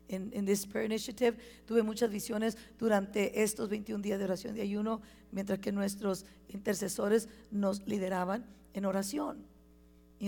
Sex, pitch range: female, 195-225 Hz